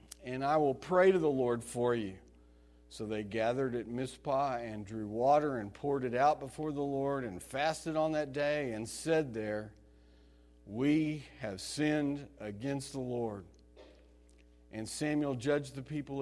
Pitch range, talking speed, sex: 100-145 Hz, 160 wpm, male